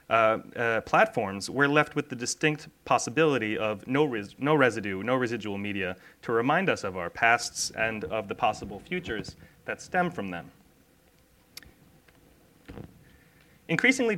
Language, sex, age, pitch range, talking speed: English, male, 30-49, 110-150 Hz, 140 wpm